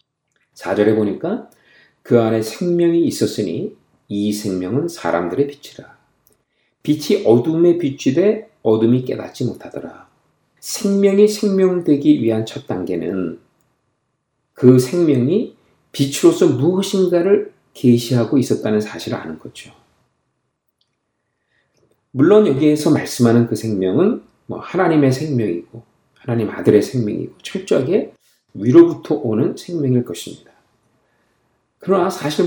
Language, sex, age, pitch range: Korean, male, 50-69, 115-185 Hz